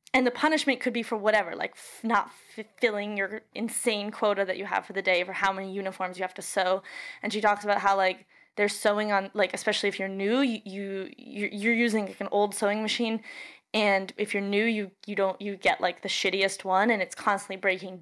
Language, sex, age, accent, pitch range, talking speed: English, female, 20-39, American, 195-220 Hz, 235 wpm